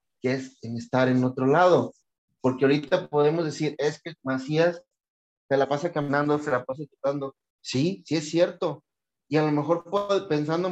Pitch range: 145-190 Hz